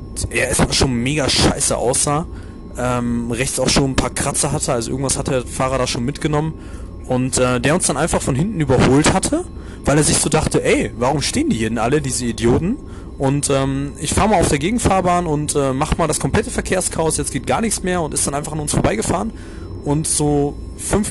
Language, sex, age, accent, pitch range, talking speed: German, male, 30-49, German, 120-150 Hz, 220 wpm